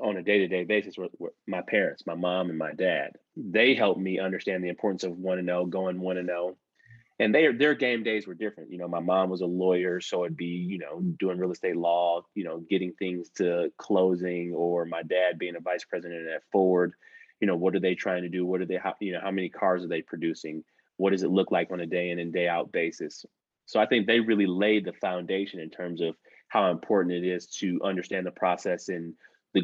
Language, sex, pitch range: English, male, 85-95 Hz